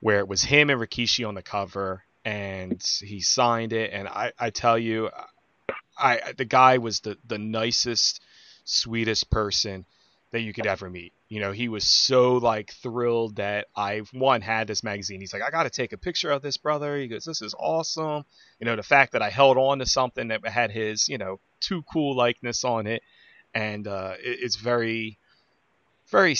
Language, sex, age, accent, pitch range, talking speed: English, male, 30-49, American, 100-120 Hz, 200 wpm